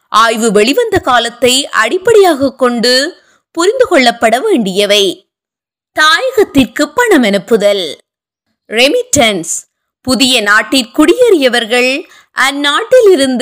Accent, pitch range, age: native, 245-345 Hz, 20-39